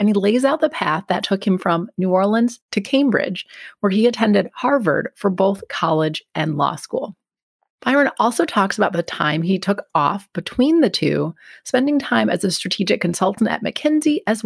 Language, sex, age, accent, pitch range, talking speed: English, female, 30-49, American, 180-235 Hz, 185 wpm